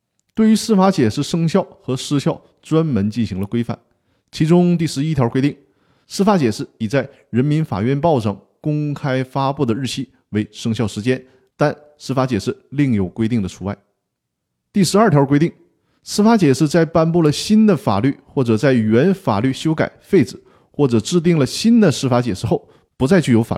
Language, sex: Chinese, male